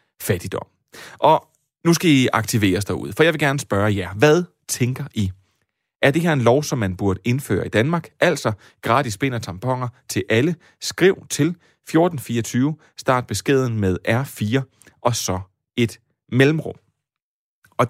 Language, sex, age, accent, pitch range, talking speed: Danish, male, 30-49, native, 100-140 Hz, 155 wpm